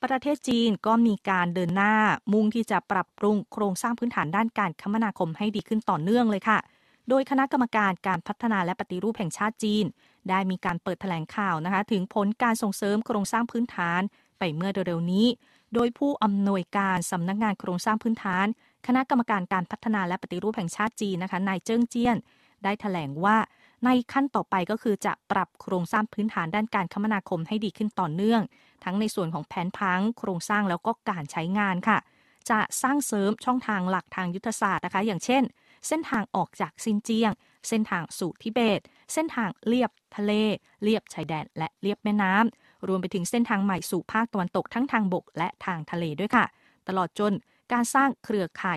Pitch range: 185-225 Hz